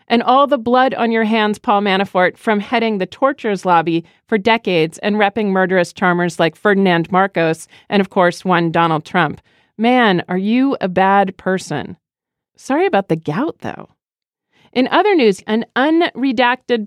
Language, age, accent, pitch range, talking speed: English, 40-59, American, 180-235 Hz, 160 wpm